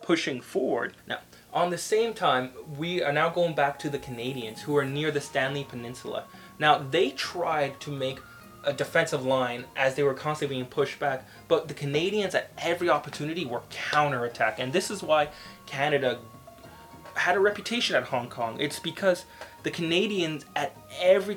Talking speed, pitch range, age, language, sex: 170 wpm, 130-165 Hz, 20-39, English, male